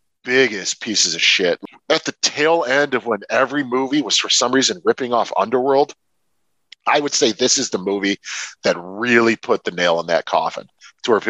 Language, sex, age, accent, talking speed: English, male, 40-59, American, 195 wpm